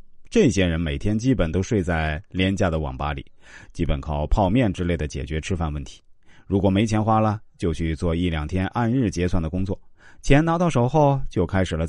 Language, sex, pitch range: Chinese, male, 80-110 Hz